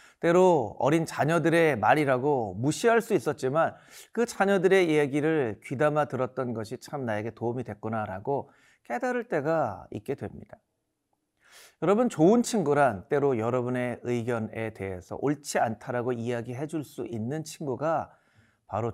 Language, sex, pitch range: Korean, male, 115-165 Hz